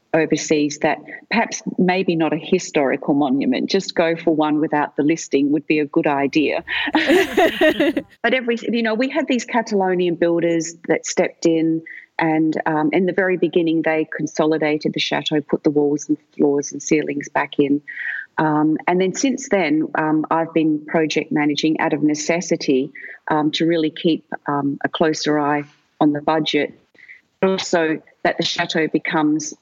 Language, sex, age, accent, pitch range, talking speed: English, female, 40-59, Australian, 150-180 Hz, 160 wpm